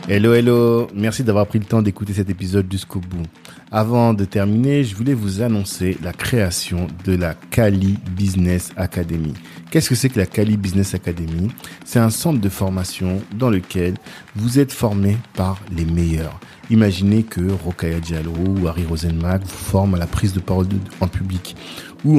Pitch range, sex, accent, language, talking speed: 90-105 Hz, male, French, French, 175 wpm